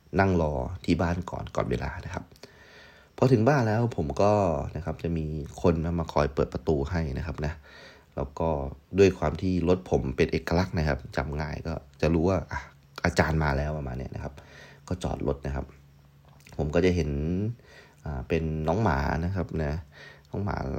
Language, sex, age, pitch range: Thai, male, 30-49, 75-90 Hz